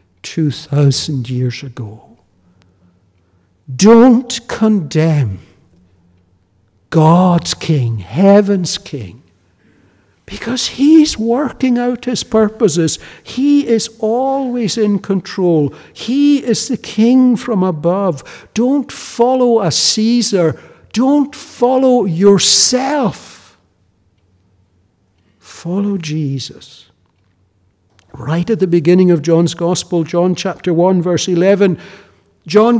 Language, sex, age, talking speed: English, male, 60-79, 90 wpm